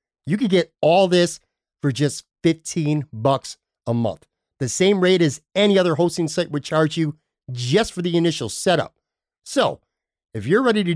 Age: 50-69